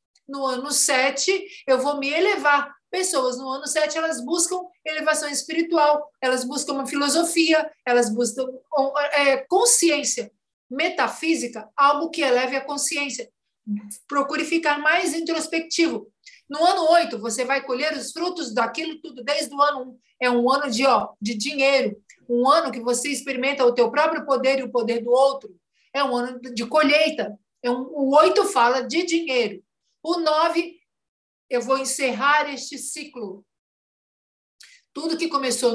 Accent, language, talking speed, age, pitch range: Brazilian, Portuguese, 150 wpm, 50-69, 245-310 Hz